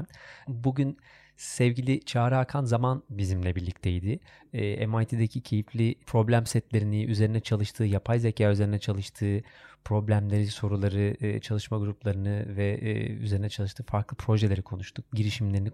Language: Turkish